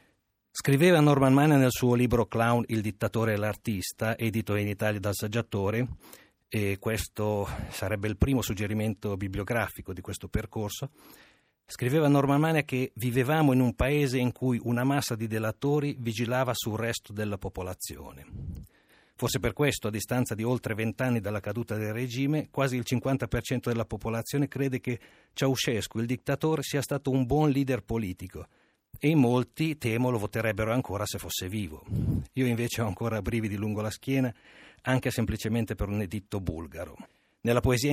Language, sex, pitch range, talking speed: Italian, male, 105-130 Hz, 155 wpm